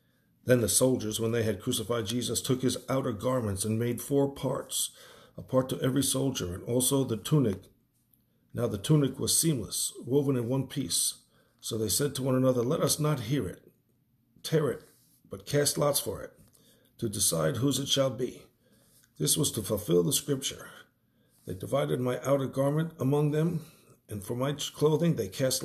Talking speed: 180 wpm